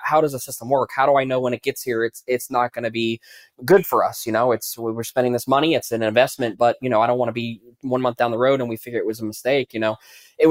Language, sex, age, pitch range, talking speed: English, male, 20-39, 120-145 Hz, 315 wpm